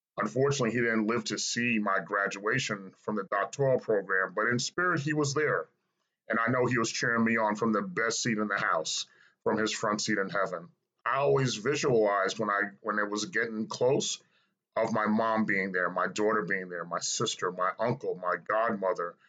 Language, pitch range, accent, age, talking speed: English, 110-140 Hz, American, 30-49, 200 wpm